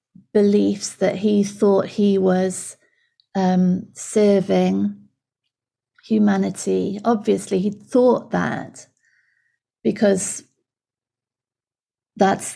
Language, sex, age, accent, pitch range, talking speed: English, female, 30-49, British, 185-220 Hz, 70 wpm